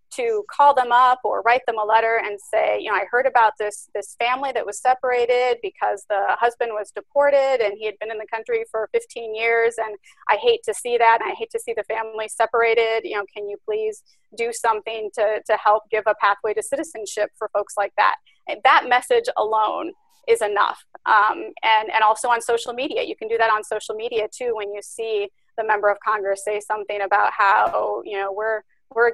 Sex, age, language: female, 30-49, English